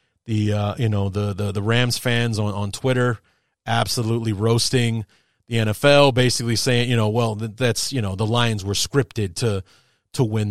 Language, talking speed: English, 175 wpm